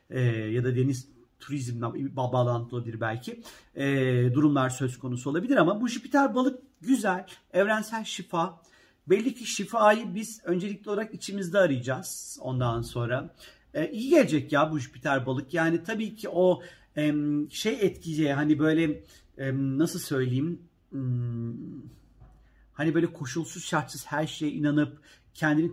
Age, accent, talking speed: 50-69, native, 135 wpm